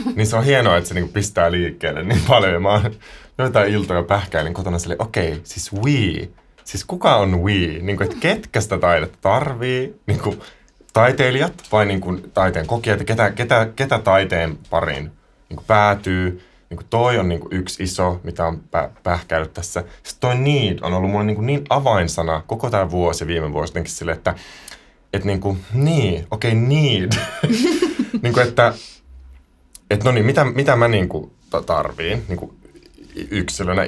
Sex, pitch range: male, 85-115 Hz